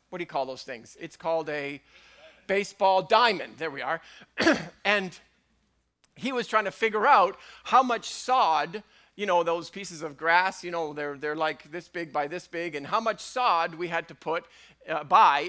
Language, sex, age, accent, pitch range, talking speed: English, male, 40-59, American, 160-200 Hz, 195 wpm